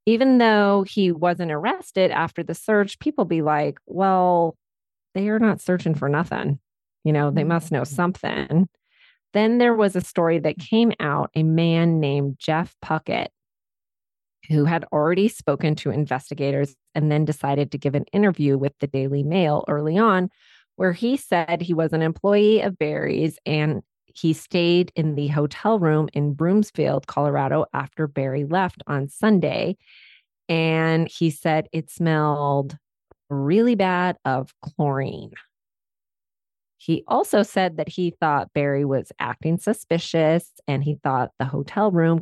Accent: American